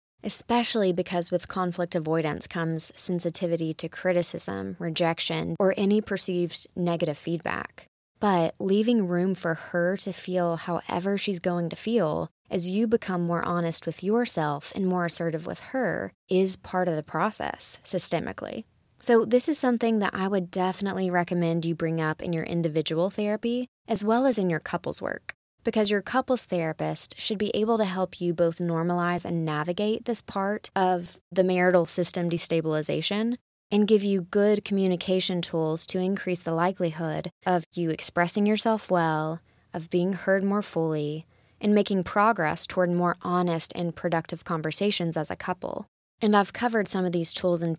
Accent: American